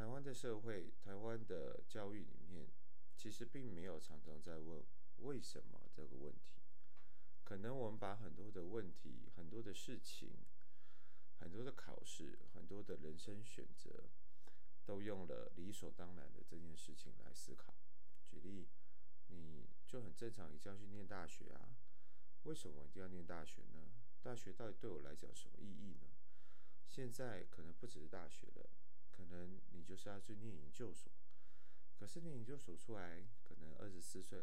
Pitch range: 80-110 Hz